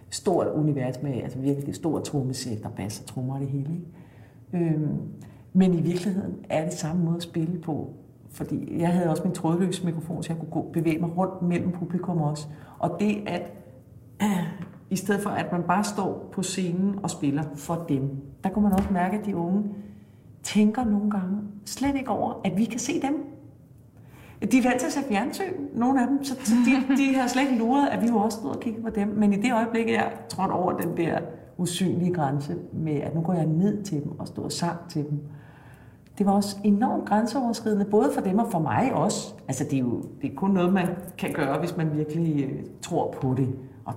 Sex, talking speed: female, 210 wpm